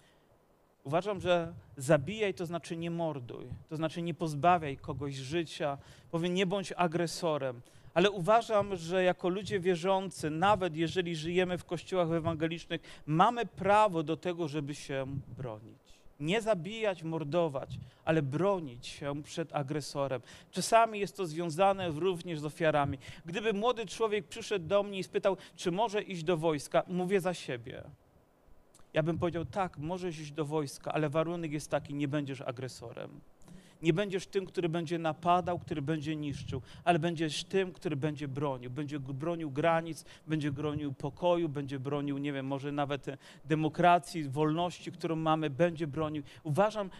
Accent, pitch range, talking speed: native, 150-185 Hz, 150 wpm